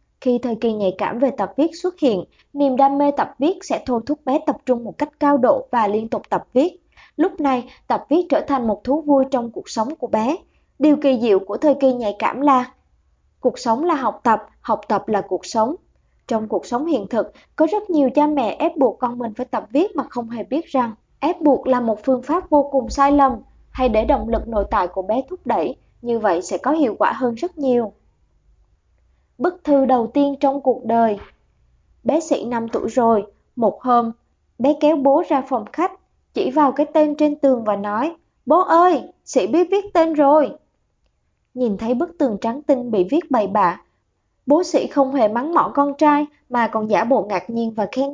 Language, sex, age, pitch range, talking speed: Vietnamese, male, 20-39, 230-295 Hz, 220 wpm